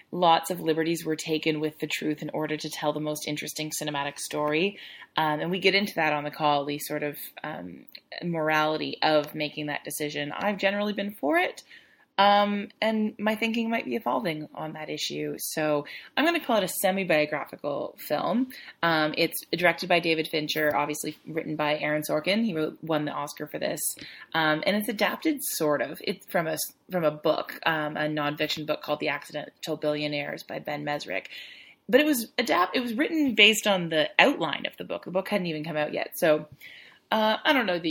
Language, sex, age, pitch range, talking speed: English, female, 20-39, 150-205 Hz, 200 wpm